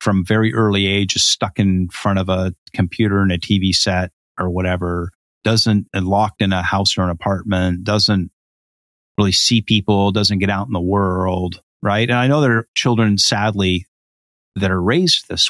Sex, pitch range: male, 95-115 Hz